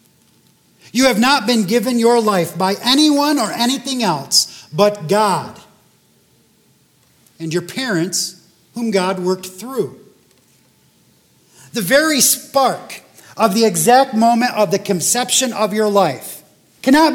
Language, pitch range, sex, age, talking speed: English, 175-245 Hz, male, 40-59, 125 wpm